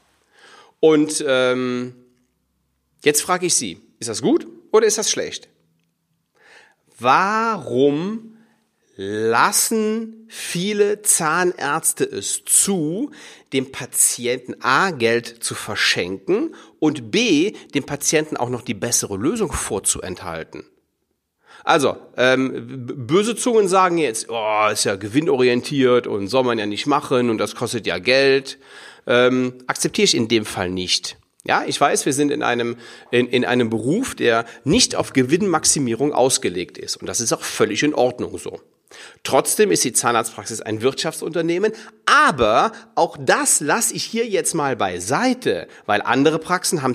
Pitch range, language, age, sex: 120-200 Hz, German, 40-59, male